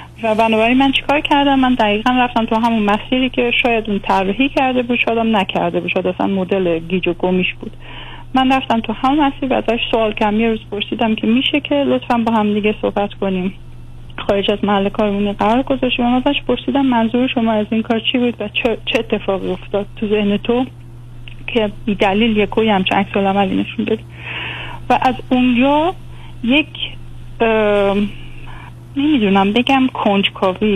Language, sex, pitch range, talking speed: Persian, female, 195-245 Hz, 170 wpm